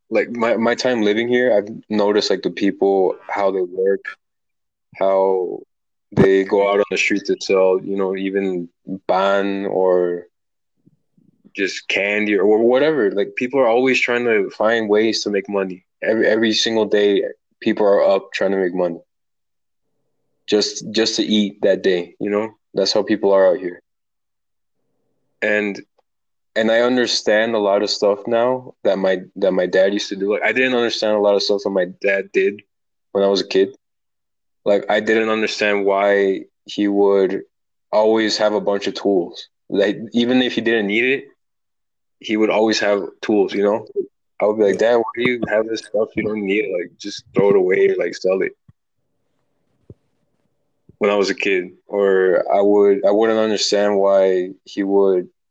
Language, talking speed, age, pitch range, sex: English, 180 wpm, 20-39, 100-115 Hz, male